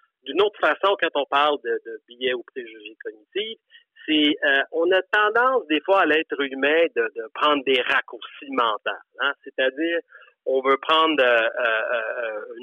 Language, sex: French, male